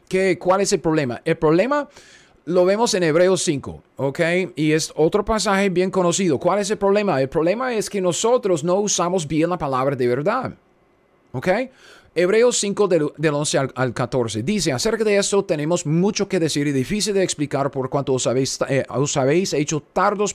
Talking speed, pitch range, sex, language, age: 185 wpm, 145-195 Hz, male, Spanish, 30-49